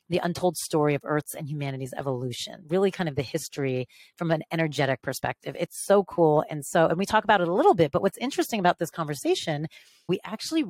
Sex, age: female, 30-49